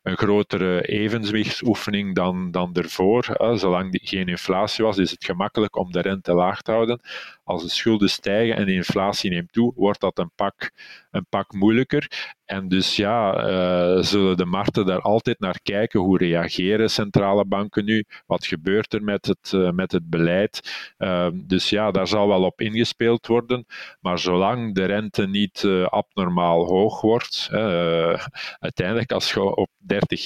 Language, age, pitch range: Dutch, 50-69, 90-105 Hz